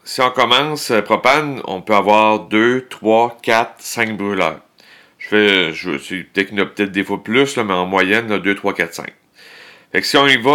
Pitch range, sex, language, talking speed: 95-120 Hz, male, French, 205 wpm